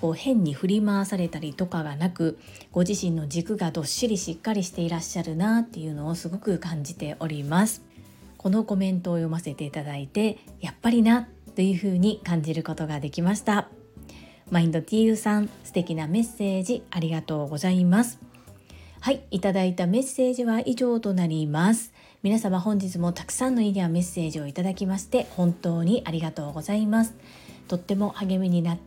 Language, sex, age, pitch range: Japanese, female, 40-59, 165-220 Hz